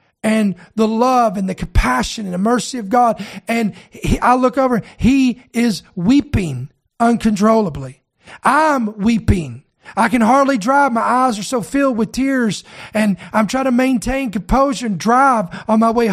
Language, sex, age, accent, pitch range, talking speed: English, male, 40-59, American, 220-280 Hz, 160 wpm